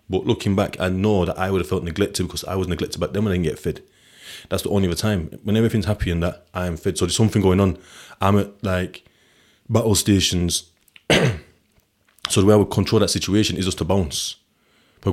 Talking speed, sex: 230 wpm, male